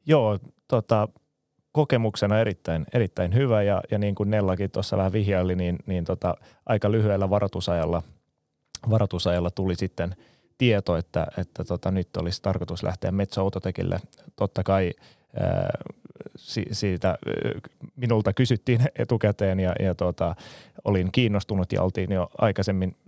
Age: 30-49